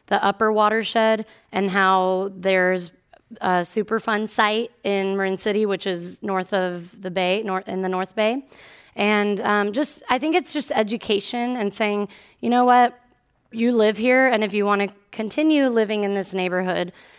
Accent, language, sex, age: American, English, female, 20-39